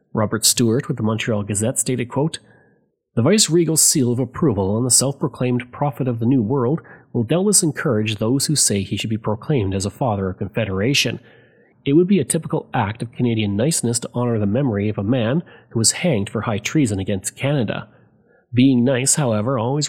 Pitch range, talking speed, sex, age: 115-150 Hz, 195 wpm, male, 30-49